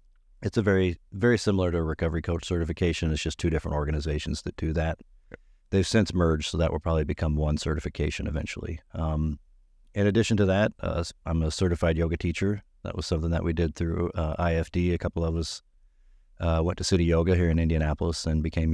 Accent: American